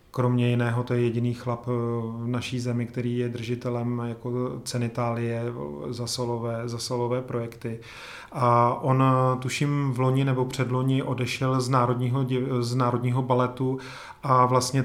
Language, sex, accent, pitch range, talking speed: Czech, male, native, 120-130 Hz, 130 wpm